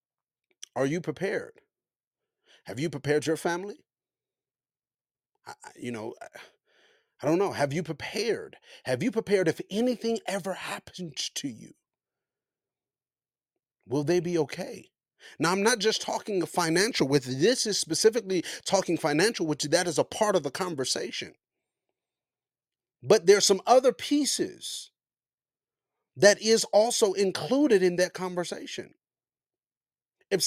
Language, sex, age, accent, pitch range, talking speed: English, male, 40-59, American, 175-235 Hz, 125 wpm